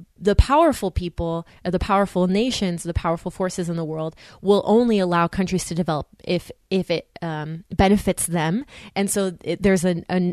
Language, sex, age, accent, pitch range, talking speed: English, female, 20-39, American, 175-210 Hz, 175 wpm